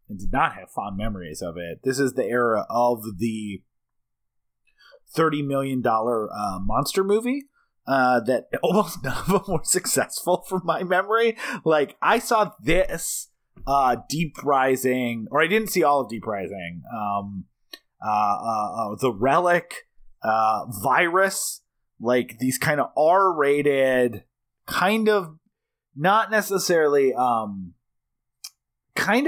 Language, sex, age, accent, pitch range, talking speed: English, male, 30-49, American, 115-170 Hz, 130 wpm